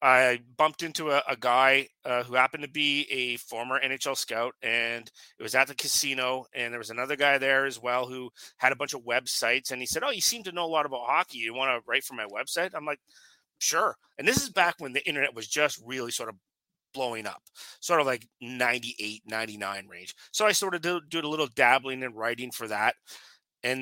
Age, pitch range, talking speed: 30-49, 125-145 Hz, 225 wpm